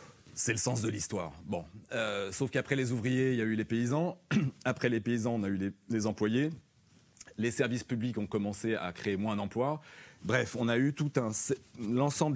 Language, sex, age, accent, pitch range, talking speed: French, male, 40-59, French, 100-130 Hz, 185 wpm